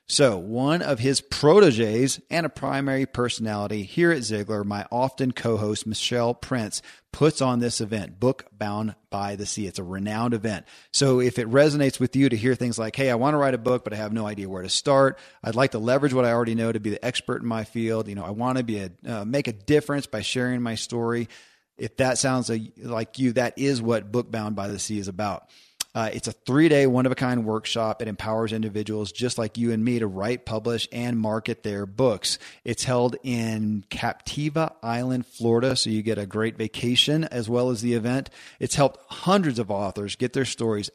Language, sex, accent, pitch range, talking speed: English, male, American, 110-130 Hz, 220 wpm